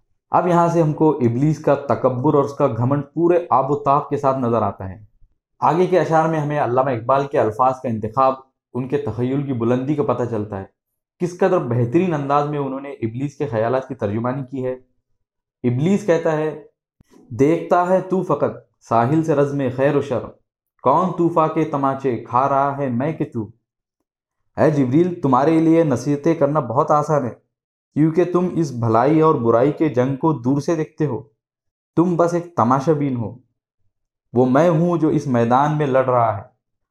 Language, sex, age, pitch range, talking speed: Urdu, male, 20-39, 120-155 Hz, 185 wpm